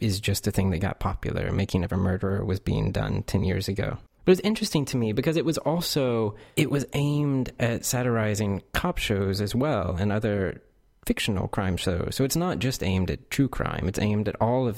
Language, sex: English, male